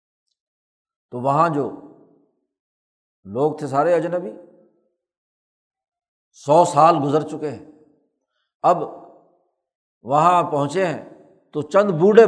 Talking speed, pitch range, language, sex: 95 wpm, 140-175 Hz, Urdu, male